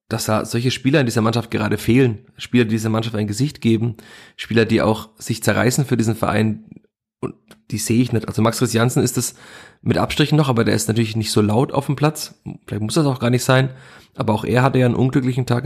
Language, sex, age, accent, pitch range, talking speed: German, male, 30-49, German, 110-130 Hz, 240 wpm